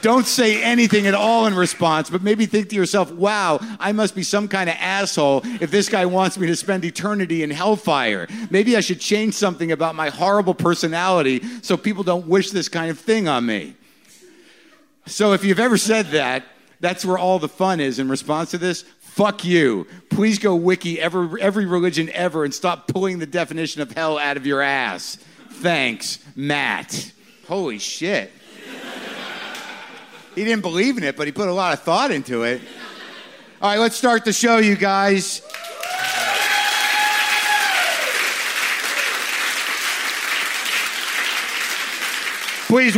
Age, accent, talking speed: 50-69, American, 155 wpm